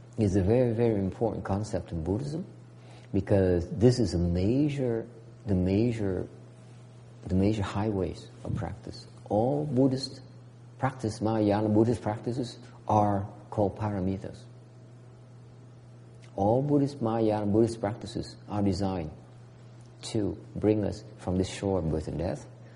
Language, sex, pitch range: English, male, 100-120 Hz